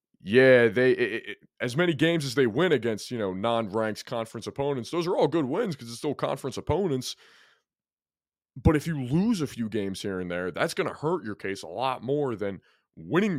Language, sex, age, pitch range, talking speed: English, male, 20-39, 95-140 Hz, 210 wpm